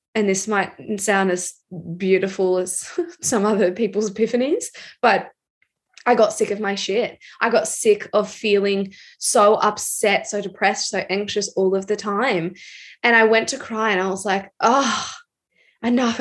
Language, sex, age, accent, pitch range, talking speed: English, female, 10-29, Australian, 190-235 Hz, 165 wpm